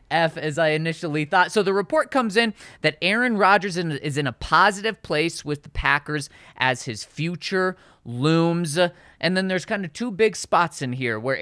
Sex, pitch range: male, 135-185 Hz